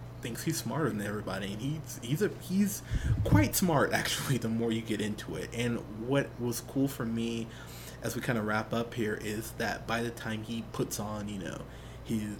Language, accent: English, American